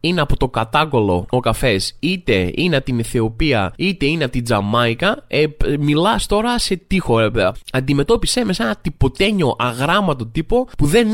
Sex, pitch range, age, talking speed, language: male, 125-195 Hz, 20-39, 170 wpm, Greek